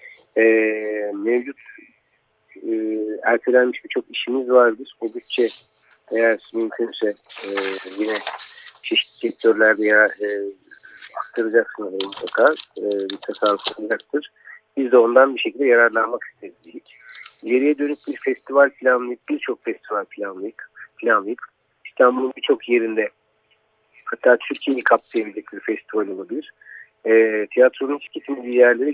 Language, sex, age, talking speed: Turkish, male, 50-69, 100 wpm